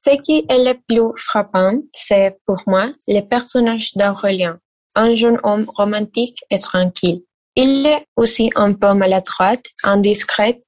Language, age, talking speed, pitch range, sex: French, 10-29, 140 wpm, 195-240 Hz, female